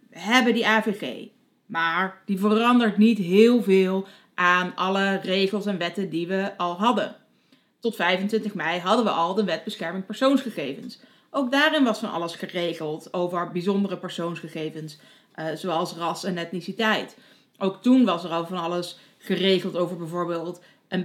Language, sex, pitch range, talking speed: Dutch, female, 180-225 Hz, 155 wpm